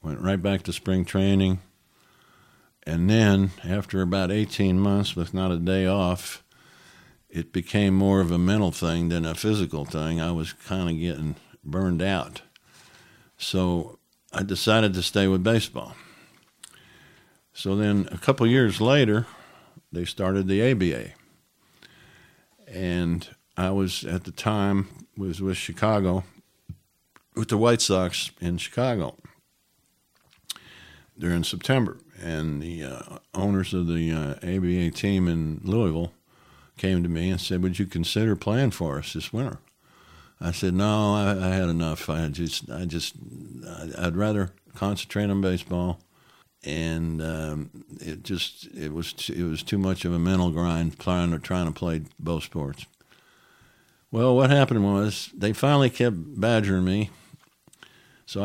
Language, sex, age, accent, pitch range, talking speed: English, male, 50-69, American, 85-100 Hz, 145 wpm